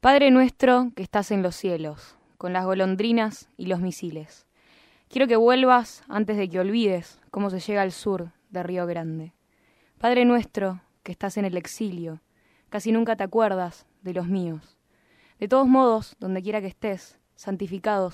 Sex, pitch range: female, 180-215 Hz